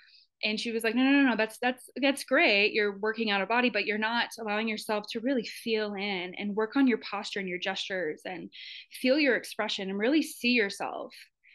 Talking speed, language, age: 220 wpm, English, 20-39